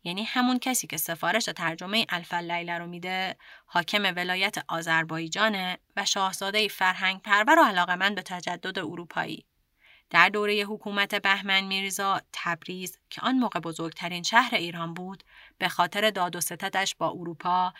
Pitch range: 175-215 Hz